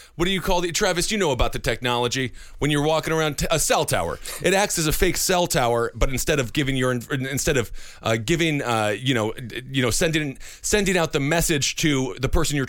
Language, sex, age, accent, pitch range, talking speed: English, male, 30-49, American, 120-160 Hz, 225 wpm